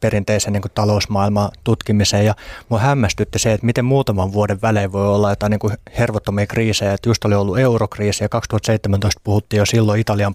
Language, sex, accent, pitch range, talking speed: Finnish, male, native, 105-125 Hz, 180 wpm